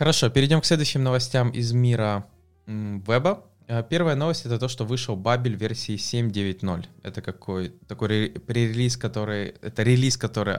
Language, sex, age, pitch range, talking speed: English, male, 20-39, 95-125 Hz, 145 wpm